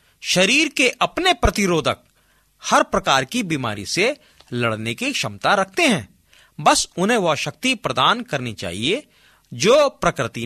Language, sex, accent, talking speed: Hindi, male, native, 130 wpm